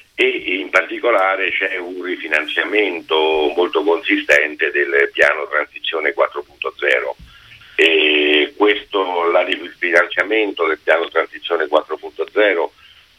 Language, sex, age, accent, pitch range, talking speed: Italian, male, 50-69, native, 335-435 Hz, 90 wpm